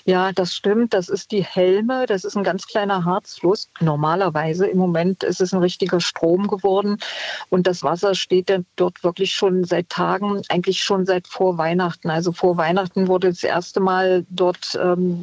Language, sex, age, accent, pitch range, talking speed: German, female, 50-69, German, 180-200 Hz, 180 wpm